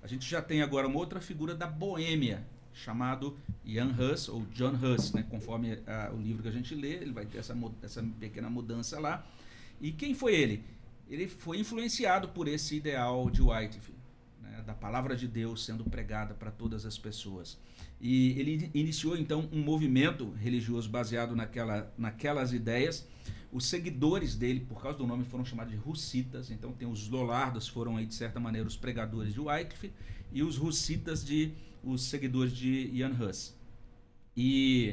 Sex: male